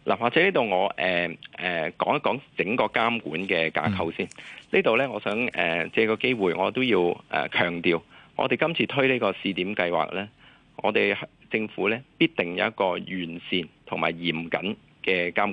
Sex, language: male, Chinese